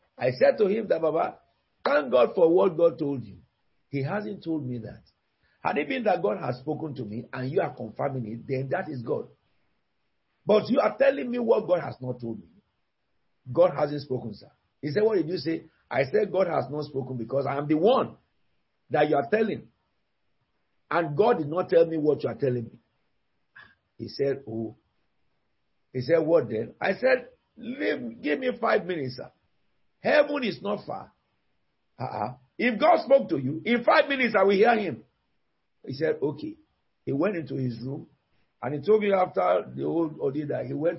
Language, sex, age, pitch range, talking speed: English, male, 50-69, 130-205 Hz, 195 wpm